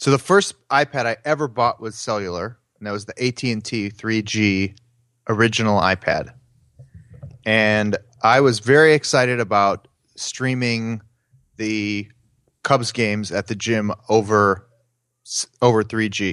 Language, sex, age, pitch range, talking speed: English, male, 30-49, 110-130 Hz, 120 wpm